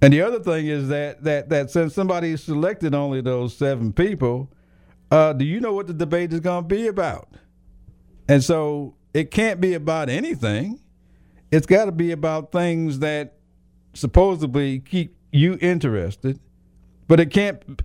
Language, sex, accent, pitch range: English, male, American, 125-175 Hz